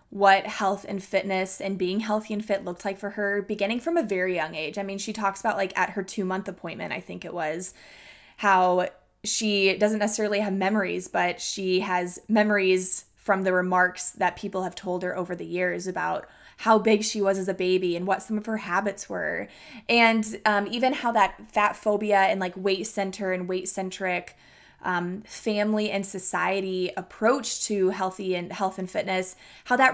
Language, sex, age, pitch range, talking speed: English, female, 20-39, 185-215 Hz, 190 wpm